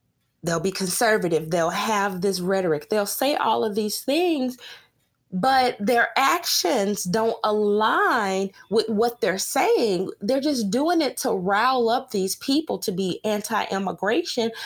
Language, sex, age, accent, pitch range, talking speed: English, female, 20-39, American, 205-290 Hz, 140 wpm